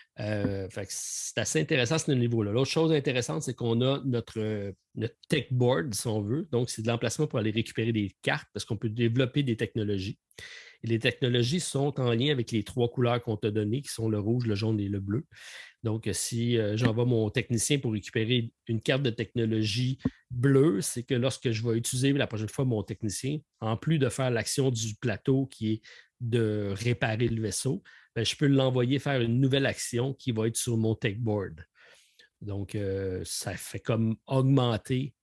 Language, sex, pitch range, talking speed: French, male, 110-135 Hz, 195 wpm